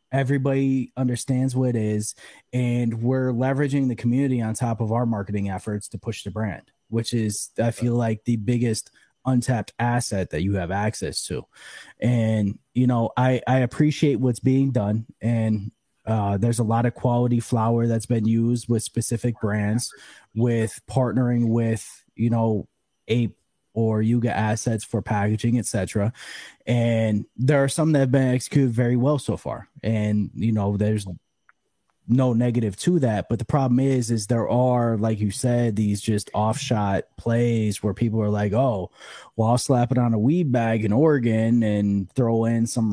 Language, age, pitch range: English, 20-39, 110-125 Hz